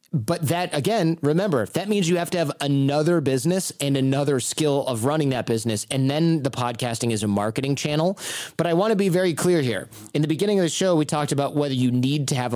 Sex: male